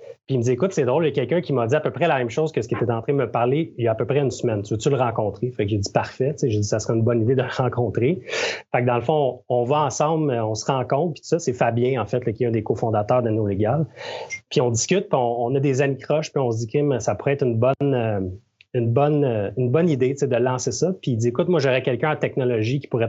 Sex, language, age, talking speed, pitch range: male, French, 30-49, 325 wpm, 115-145 Hz